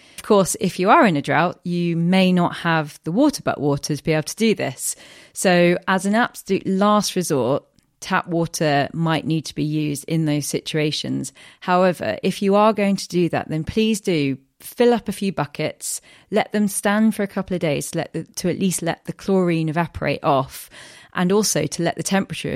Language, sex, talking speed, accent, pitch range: English, female, 210 wpm, British, 155-190 Hz